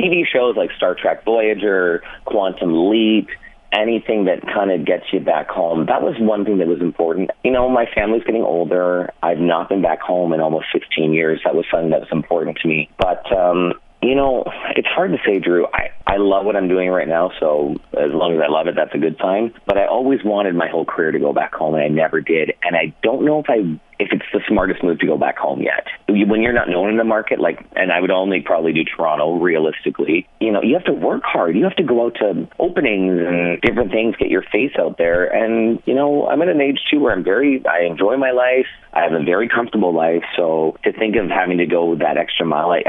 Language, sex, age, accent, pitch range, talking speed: English, male, 30-49, American, 85-115 Hz, 245 wpm